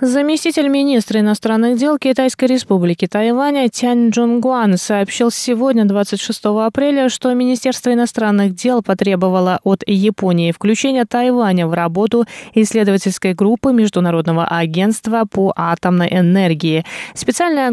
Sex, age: female, 20-39